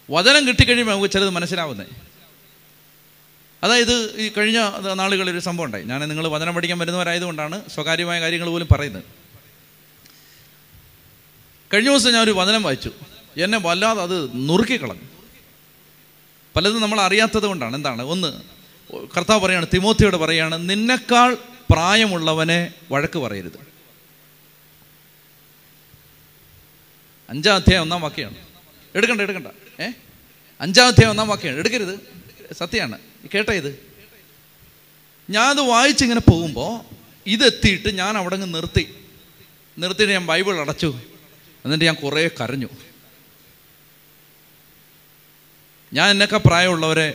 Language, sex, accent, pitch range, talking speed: Malayalam, male, native, 155-215 Hz, 100 wpm